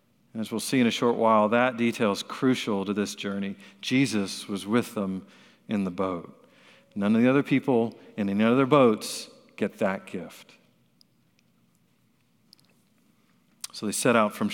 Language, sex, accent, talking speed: English, male, American, 155 wpm